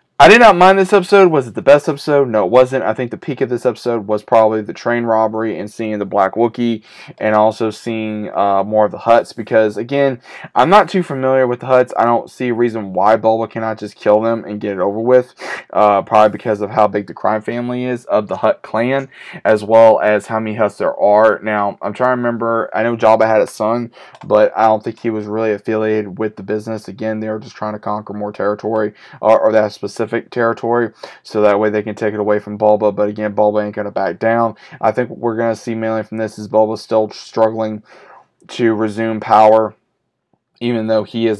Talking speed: 230 wpm